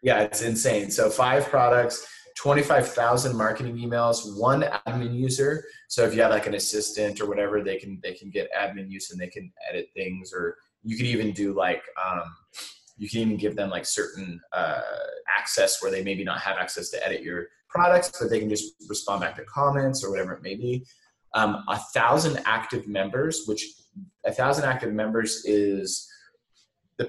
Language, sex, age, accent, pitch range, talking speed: English, male, 20-39, American, 105-155 Hz, 185 wpm